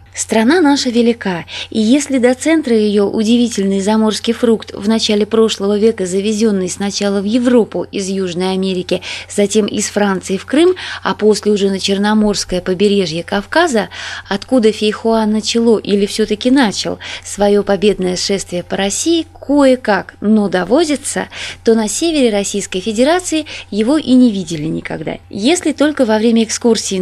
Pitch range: 195-250 Hz